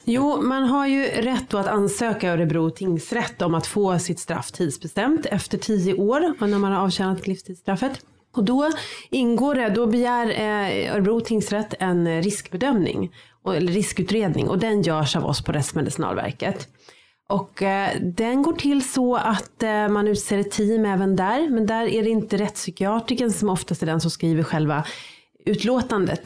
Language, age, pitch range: Swedish, 30-49, 175-225 Hz